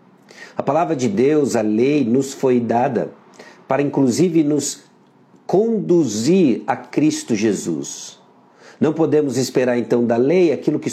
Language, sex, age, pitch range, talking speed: Portuguese, male, 50-69, 115-150 Hz, 130 wpm